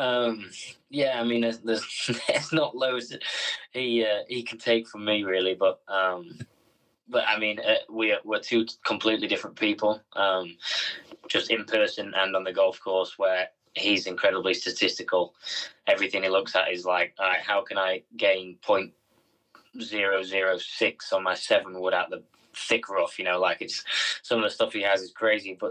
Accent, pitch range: British, 95-105 Hz